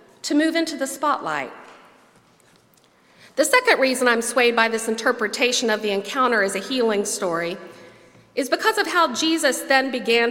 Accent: American